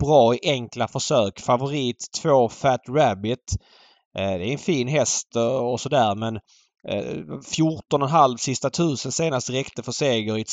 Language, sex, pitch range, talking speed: Swedish, male, 115-135 Hz, 165 wpm